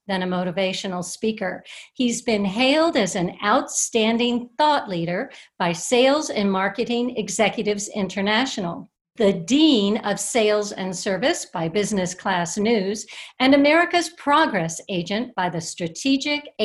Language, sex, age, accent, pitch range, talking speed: English, female, 50-69, American, 185-255 Hz, 125 wpm